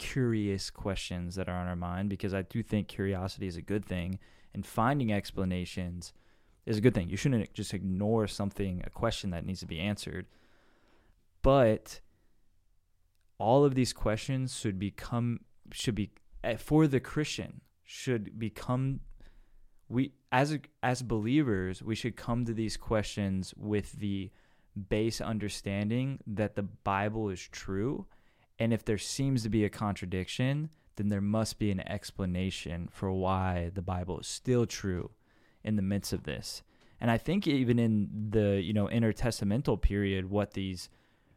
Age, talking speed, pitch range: 20-39, 155 wpm, 95-115 Hz